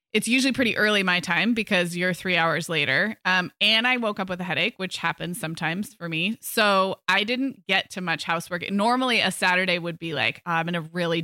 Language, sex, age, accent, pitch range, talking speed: English, female, 20-39, American, 170-215 Hz, 220 wpm